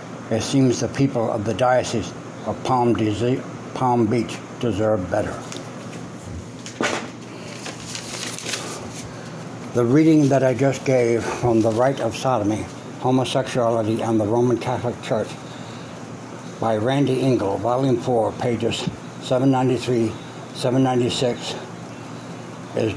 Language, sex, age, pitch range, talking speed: English, male, 60-79, 110-130 Hz, 100 wpm